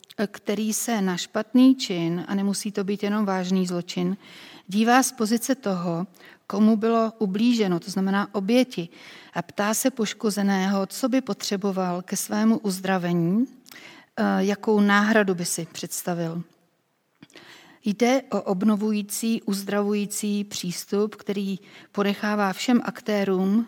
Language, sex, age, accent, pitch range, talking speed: Czech, female, 40-59, native, 190-220 Hz, 115 wpm